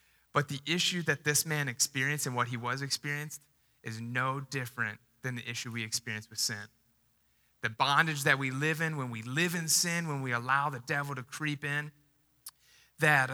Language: English